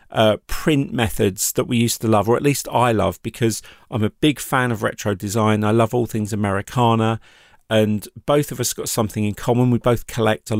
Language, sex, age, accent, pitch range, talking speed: English, male, 40-59, British, 105-130 Hz, 215 wpm